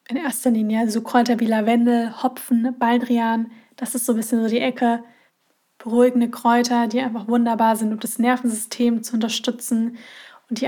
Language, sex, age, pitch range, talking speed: German, female, 20-39, 230-255 Hz, 180 wpm